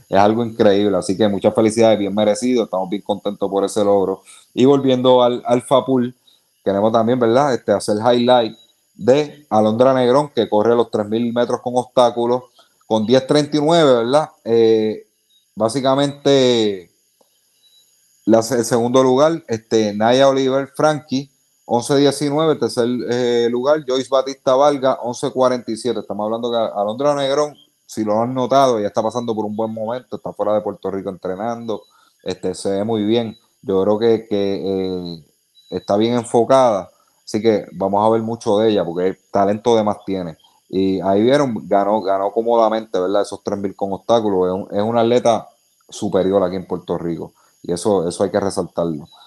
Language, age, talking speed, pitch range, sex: Spanish, 30-49, 165 wpm, 100-125 Hz, male